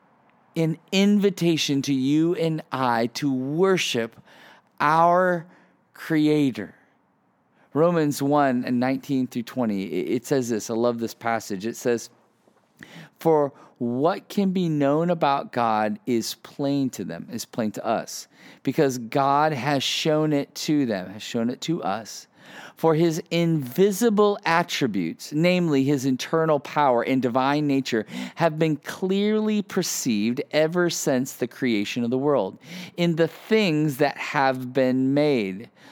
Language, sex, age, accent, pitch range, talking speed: English, male, 40-59, American, 130-170 Hz, 135 wpm